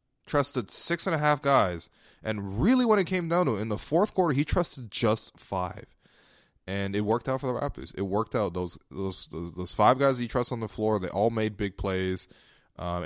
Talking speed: 225 wpm